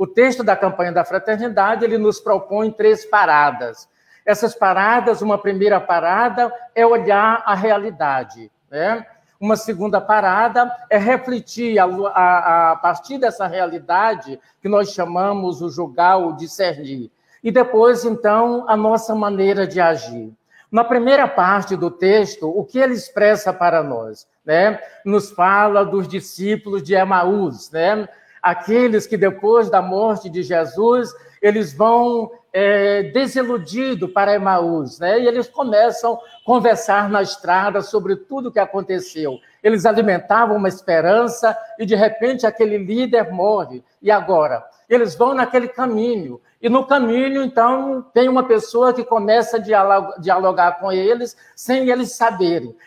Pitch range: 190-240 Hz